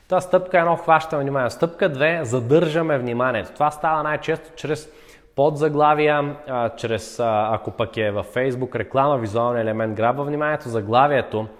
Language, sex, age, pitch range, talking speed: Bulgarian, male, 20-39, 110-140 Hz, 145 wpm